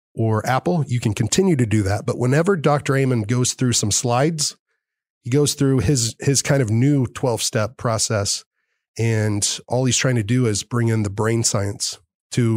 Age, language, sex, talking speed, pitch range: 20-39, English, male, 190 wpm, 110-130 Hz